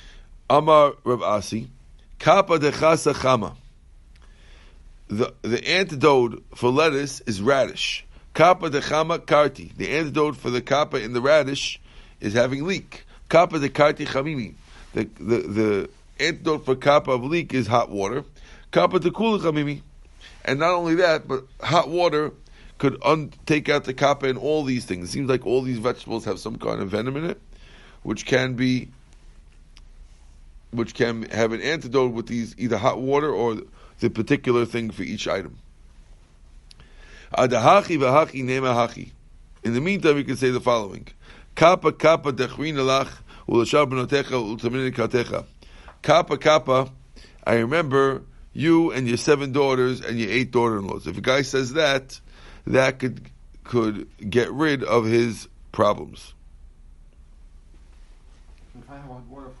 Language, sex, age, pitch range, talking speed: English, male, 50-69, 105-145 Hz, 130 wpm